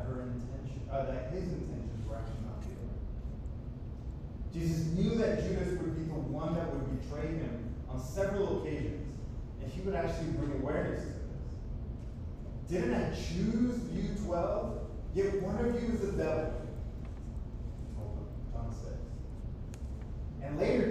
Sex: male